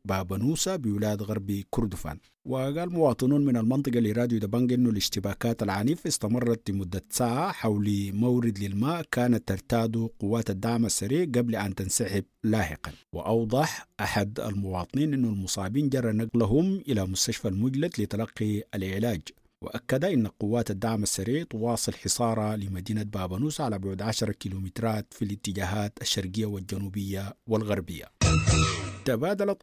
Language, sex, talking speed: English, male, 120 wpm